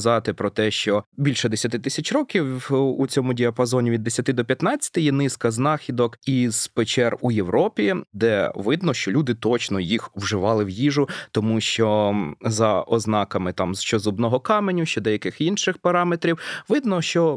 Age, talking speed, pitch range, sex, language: 20-39, 150 wpm, 115-155 Hz, male, Ukrainian